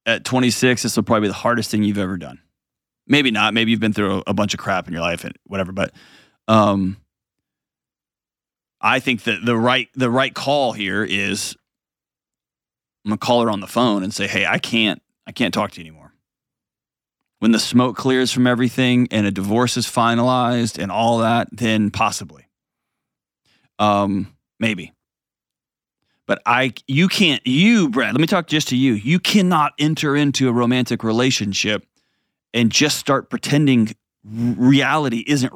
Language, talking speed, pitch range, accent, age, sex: English, 175 wpm, 105-130 Hz, American, 30-49, male